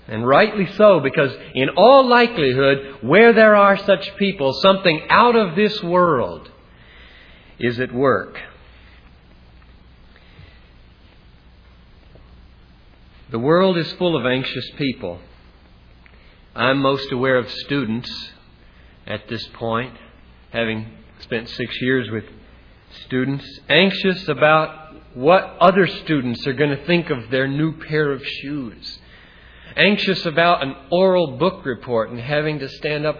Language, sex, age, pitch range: English, male, 50-69, 105-155 Hz